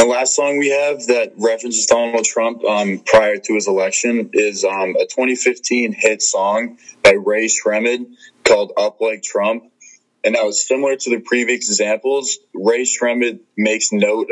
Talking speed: 165 wpm